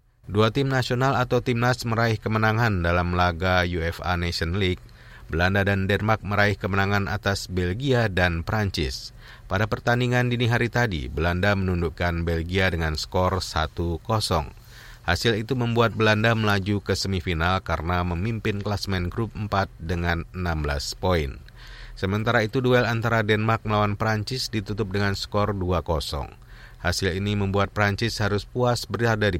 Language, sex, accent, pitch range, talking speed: Indonesian, male, native, 85-115 Hz, 135 wpm